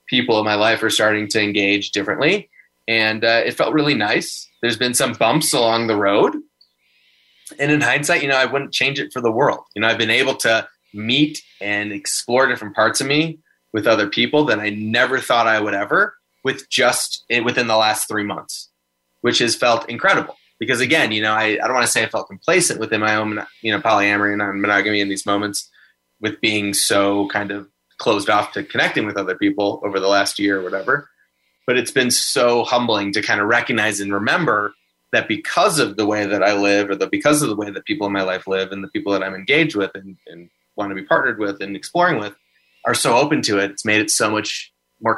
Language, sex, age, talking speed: English, male, 20-39, 230 wpm